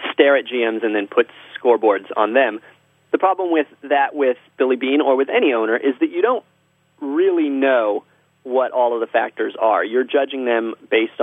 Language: English